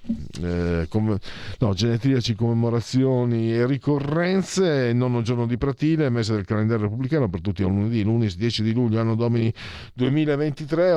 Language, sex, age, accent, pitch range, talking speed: Italian, male, 50-69, native, 90-135 Hz, 140 wpm